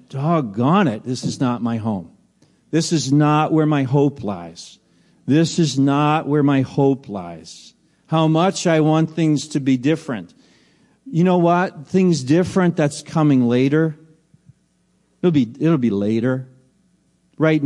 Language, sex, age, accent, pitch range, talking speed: English, male, 50-69, American, 130-180 Hz, 145 wpm